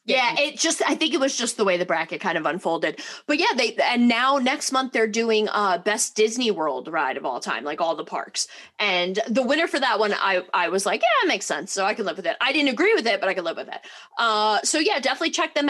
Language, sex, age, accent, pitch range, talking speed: English, female, 20-39, American, 210-275 Hz, 280 wpm